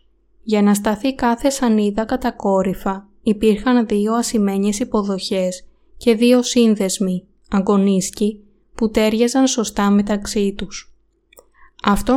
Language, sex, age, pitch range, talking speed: Greek, female, 20-39, 195-235 Hz, 100 wpm